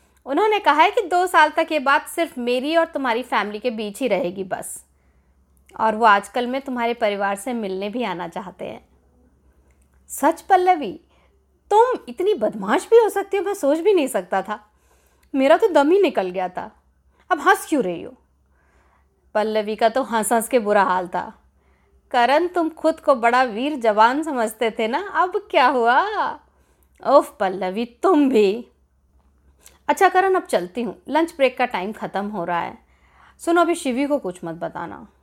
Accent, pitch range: native, 185-300 Hz